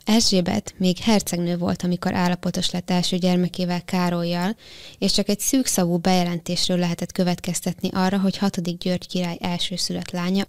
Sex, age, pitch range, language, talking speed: female, 20-39, 175-190 Hz, Hungarian, 135 wpm